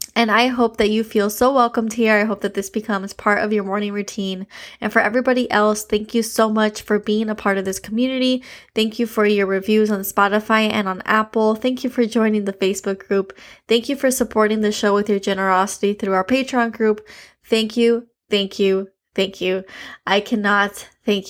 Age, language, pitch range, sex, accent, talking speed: 10-29, English, 195-225 Hz, female, American, 205 wpm